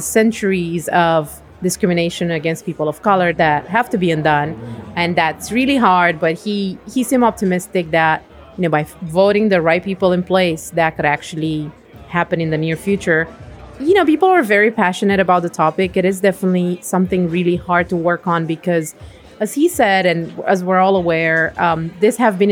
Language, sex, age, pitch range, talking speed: English, female, 30-49, 160-195 Hz, 185 wpm